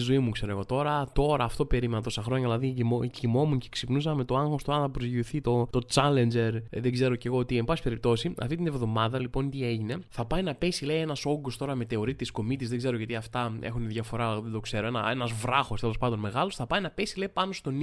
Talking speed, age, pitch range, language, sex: 240 wpm, 20-39, 120-195 Hz, Greek, male